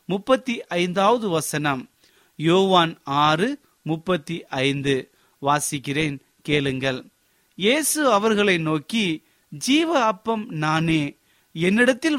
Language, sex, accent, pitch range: Tamil, male, native, 160-220 Hz